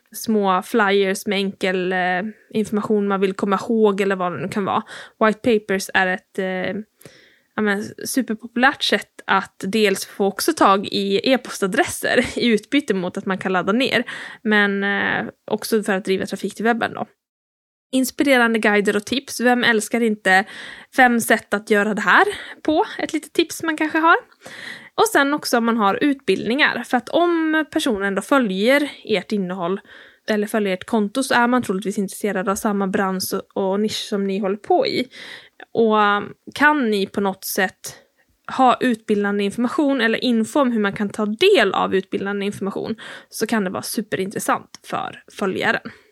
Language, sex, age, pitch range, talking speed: Swedish, female, 10-29, 195-255 Hz, 165 wpm